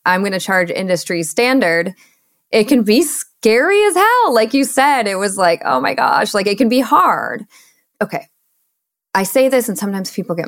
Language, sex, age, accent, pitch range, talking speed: English, female, 20-39, American, 175-235 Hz, 195 wpm